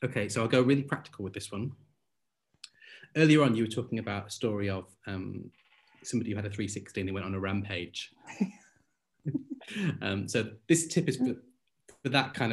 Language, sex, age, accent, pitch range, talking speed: English, male, 30-49, British, 100-135 Hz, 180 wpm